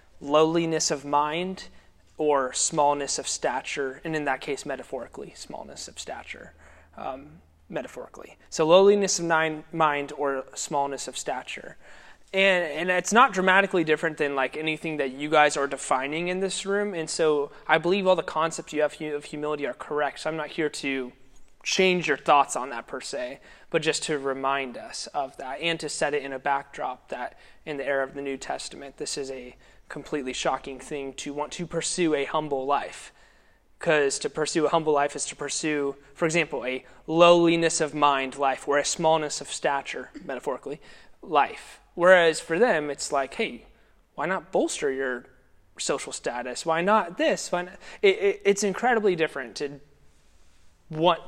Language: English